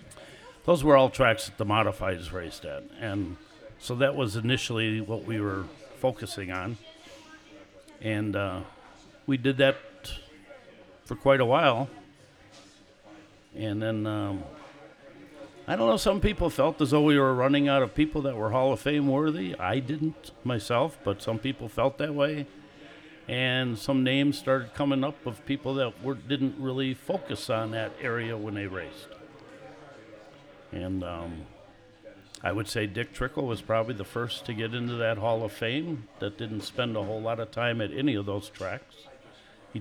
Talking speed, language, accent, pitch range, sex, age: 165 wpm, English, American, 105-135 Hz, male, 60-79